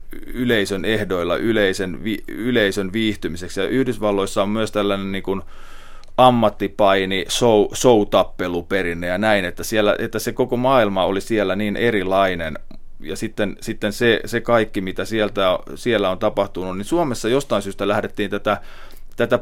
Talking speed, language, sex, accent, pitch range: 140 wpm, Finnish, male, native, 95-115 Hz